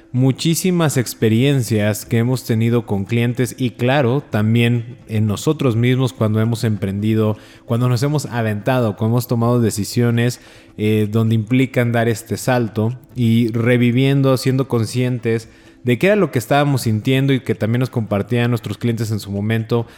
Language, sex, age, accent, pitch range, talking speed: Spanish, male, 20-39, Mexican, 110-135 Hz, 155 wpm